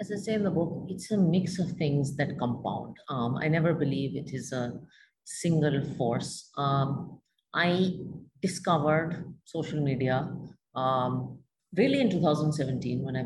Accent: Indian